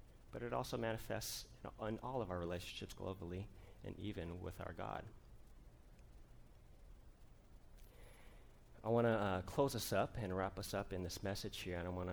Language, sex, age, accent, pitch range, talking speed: English, male, 30-49, American, 95-120 Hz, 175 wpm